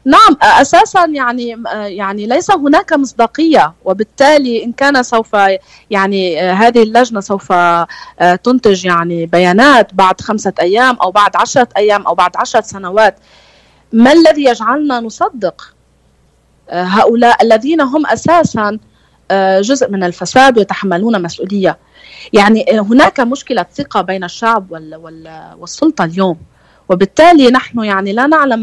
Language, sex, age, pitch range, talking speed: Arabic, female, 30-49, 190-260 Hz, 115 wpm